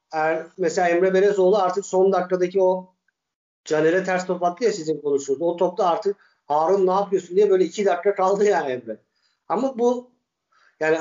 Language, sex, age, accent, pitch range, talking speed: Turkish, male, 50-69, native, 165-205 Hz, 170 wpm